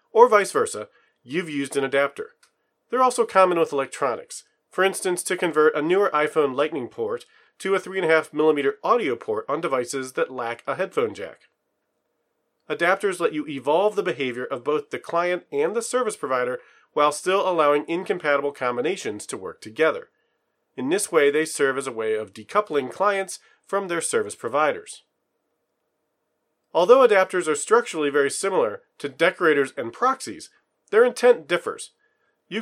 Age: 40-59